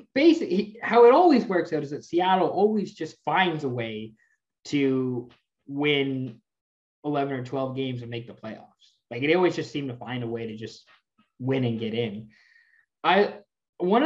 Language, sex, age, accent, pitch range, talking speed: English, male, 20-39, American, 125-185 Hz, 175 wpm